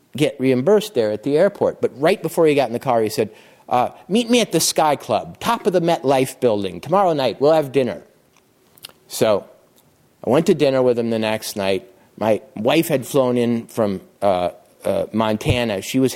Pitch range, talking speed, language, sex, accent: 120-155 Hz, 205 wpm, English, male, American